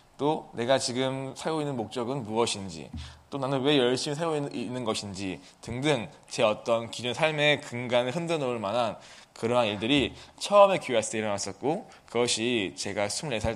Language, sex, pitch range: Korean, male, 105-145 Hz